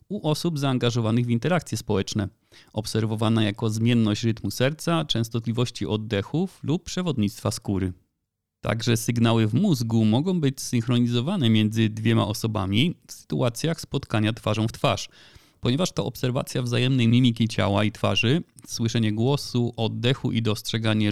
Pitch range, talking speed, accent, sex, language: 110-135 Hz, 130 wpm, native, male, Polish